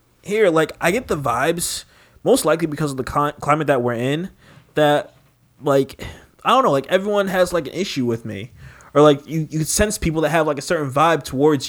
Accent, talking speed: American, 215 wpm